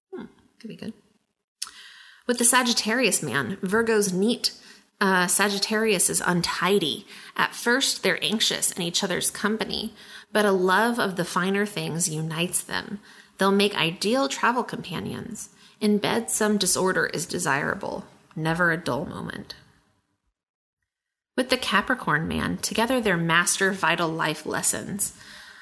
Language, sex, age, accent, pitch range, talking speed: English, female, 30-49, American, 180-220 Hz, 130 wpm